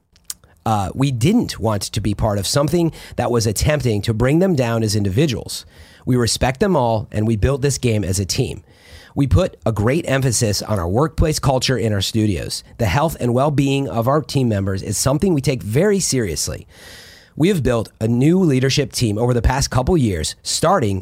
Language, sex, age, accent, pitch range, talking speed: English, male, 30-49, American, 110-145 Hz, 195 wpm